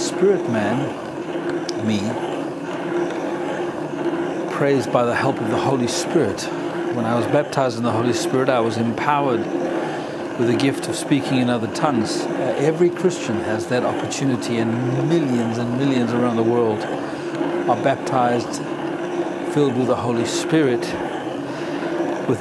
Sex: male